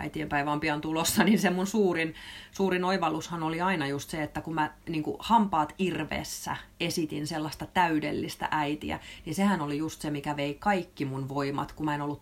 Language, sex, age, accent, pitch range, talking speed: Finnish, female, 30-49, native, 140-180 Hz, 190 wpm